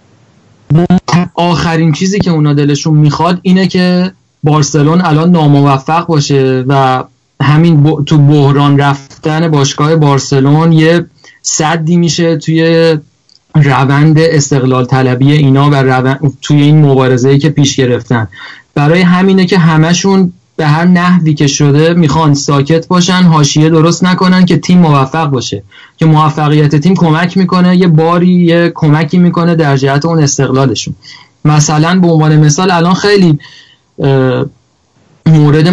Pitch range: 140-165 Hz